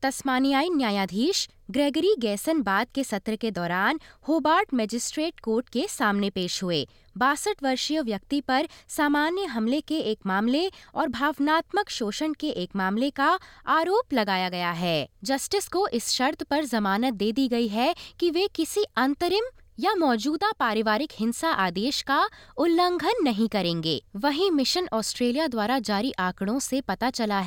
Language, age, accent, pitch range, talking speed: Hindi, 20-39, native, 220-320 Hz, 150 wpm